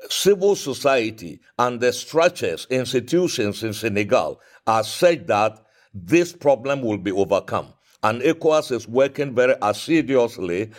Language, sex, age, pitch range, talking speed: English, male, 60-79, 115-145 Hz, 120 wpm